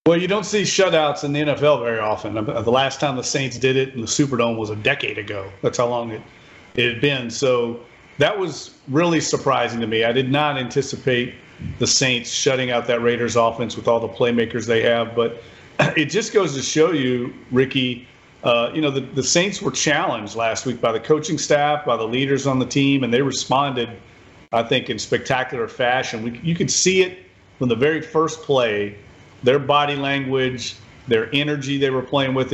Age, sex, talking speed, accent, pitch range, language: 40-59, male, 200 wpm, American, 120-145 Hz, English